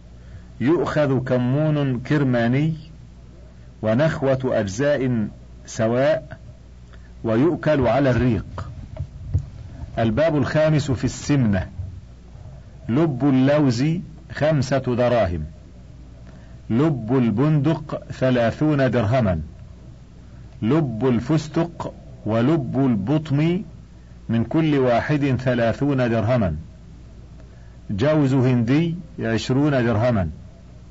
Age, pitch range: 50-69, 105-150 Hz